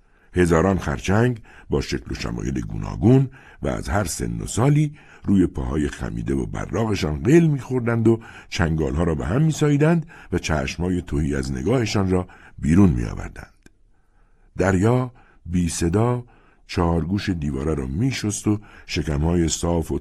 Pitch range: 80-115 Hz